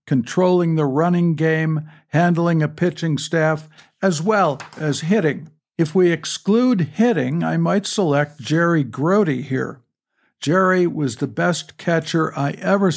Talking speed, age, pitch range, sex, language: 135 wpm, 60-79, 145-175 Hz, male, English